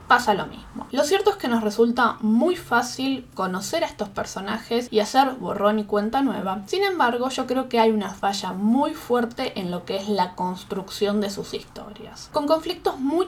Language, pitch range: Spanish, 210-275 Hz